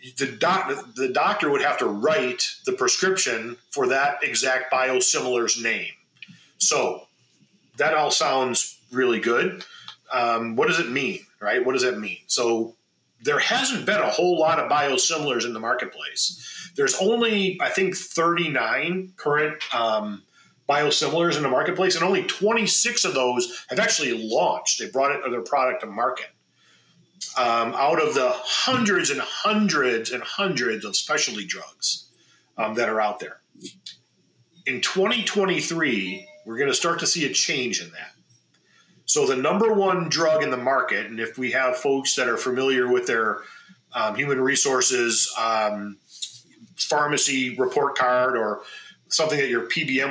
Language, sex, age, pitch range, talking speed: English, male, 40-59, 125-185 Hz, 150 wpm